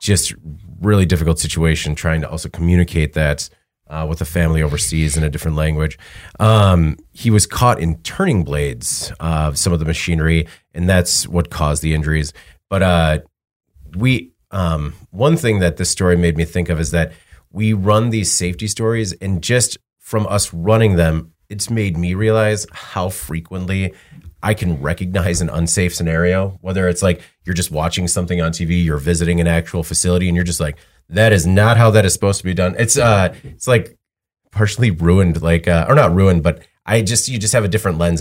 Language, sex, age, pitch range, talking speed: English, male, 30-49, 80-100 Hz, 190 wpm